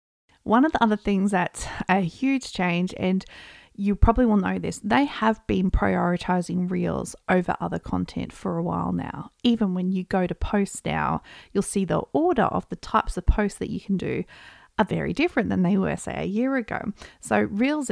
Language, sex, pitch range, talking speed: English, female, 190-235 Hz, 200 wpm